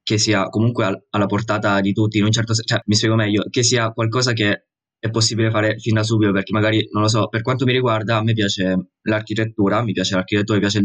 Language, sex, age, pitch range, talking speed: Italian, male, 20-39, 100-115 Hz, 250 wpm